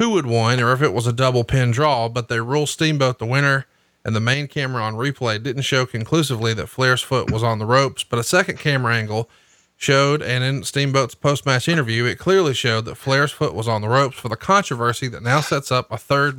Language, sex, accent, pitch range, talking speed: English, male, American, 120-140 Hz, 230 wpm